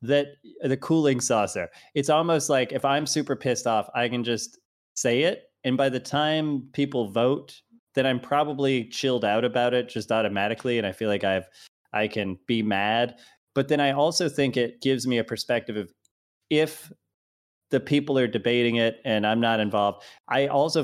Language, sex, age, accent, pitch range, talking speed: English, male, 20-39, American, 110-140 Hz, 185 wpm